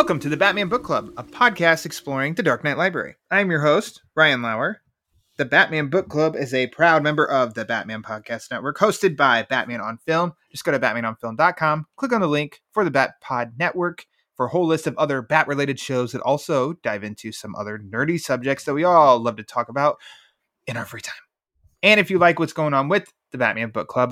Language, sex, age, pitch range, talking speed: English, male, 20-39, 125-175 Hz, 225 wpm